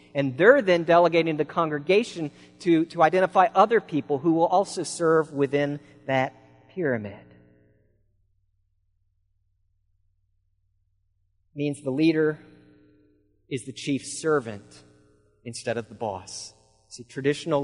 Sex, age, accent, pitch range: male, 40-59, American, 110-155 Hz